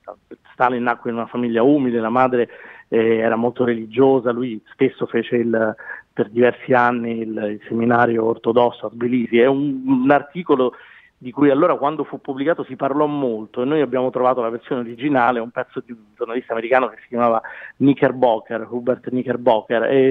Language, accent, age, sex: Italian, native, 40-59, male